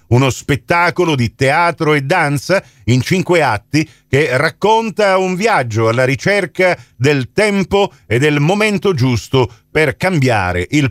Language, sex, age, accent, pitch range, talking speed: Italian, male, 50-69, native, 140-185 Hz, 130 wpm